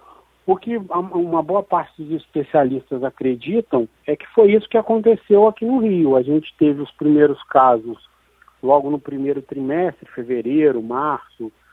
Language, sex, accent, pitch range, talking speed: Portuguese, male, Brazilian, 145-195 Hz, 150 wpm